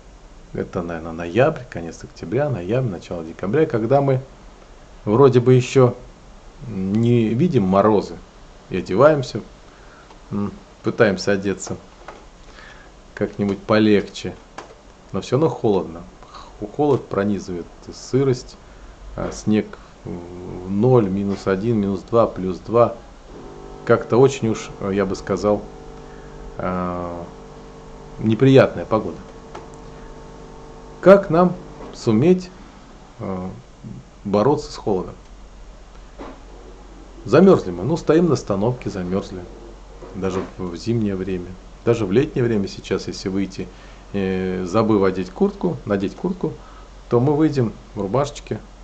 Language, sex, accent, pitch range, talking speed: Russian, male, native, 95-125 Hz, 100 wpm